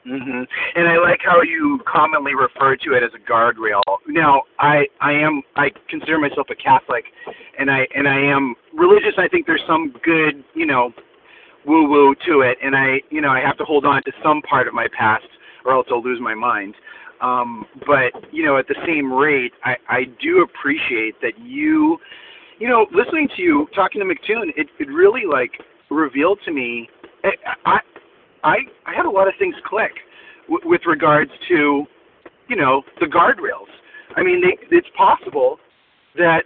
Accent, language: American, English